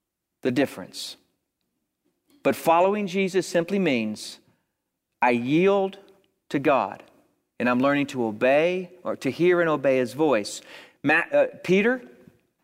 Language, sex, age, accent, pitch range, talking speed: English, male, 40-59, American, 155-205 Hz, 125 wpm